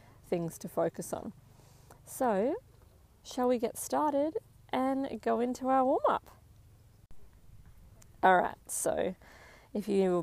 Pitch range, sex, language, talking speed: 175-250 Hz, female, English, 110 wpm